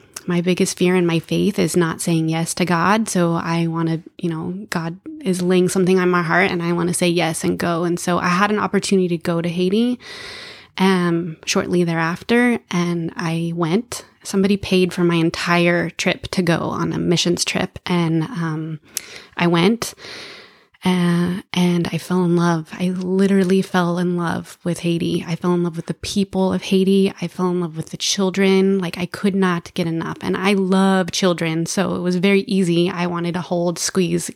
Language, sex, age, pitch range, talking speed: English, female, 20-39, 170-190 Hz, 200 wpm